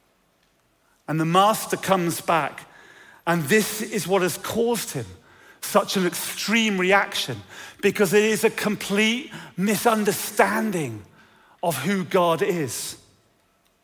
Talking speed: 115 wpm